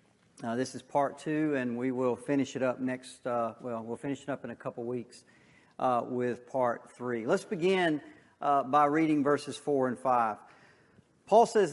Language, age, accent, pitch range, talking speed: English, 50-69, American, 125-160 Hz, 200 wpm